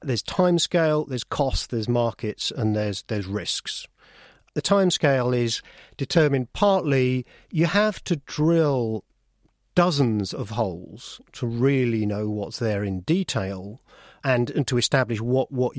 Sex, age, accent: male, 40-59, British